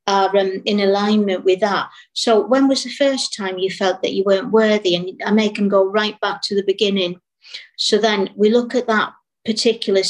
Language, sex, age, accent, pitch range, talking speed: English, female, 50-69, British, 195-235 Hz, 210 wpm